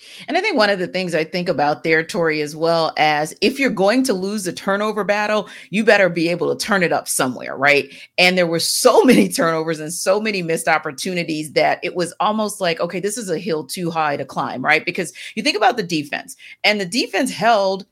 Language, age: English, 40-59